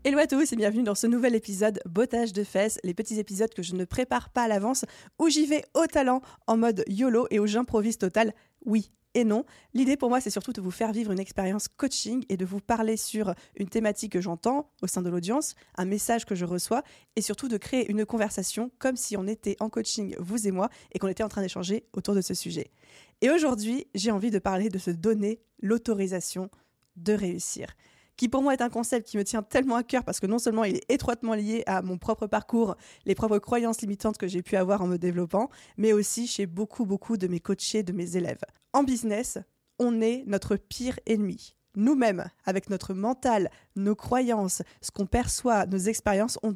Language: French